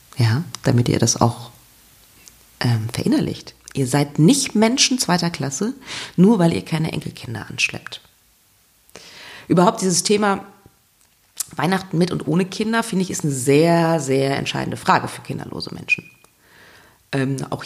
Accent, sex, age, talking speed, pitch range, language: German, female, 40-59, 135 wpm, 130-180 Hz, German